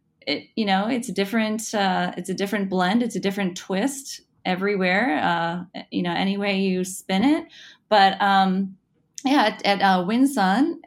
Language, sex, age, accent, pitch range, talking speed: English, female, 20-39, American, 180-220 Hz, 170 wpm